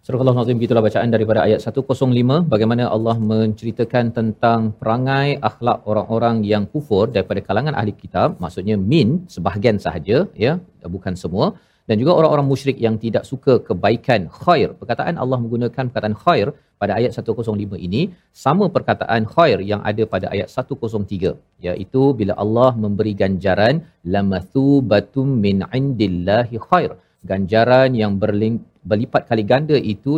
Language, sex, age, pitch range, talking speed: Malayalam, male, 40-59, 110-135 Hz, 135 wpm